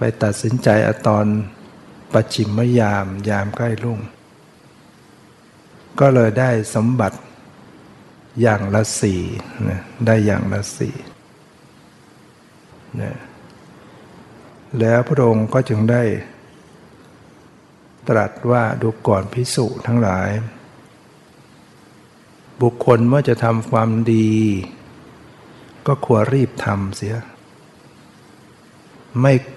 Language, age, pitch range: Thai, 60-79, 105-125 Hz